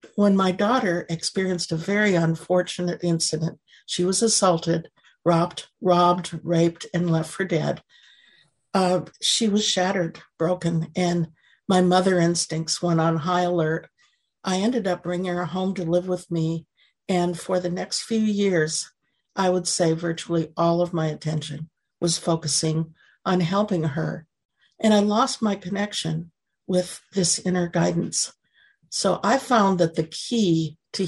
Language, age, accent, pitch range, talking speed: English, 60-79, American, 165-190 Hz, 145 wpm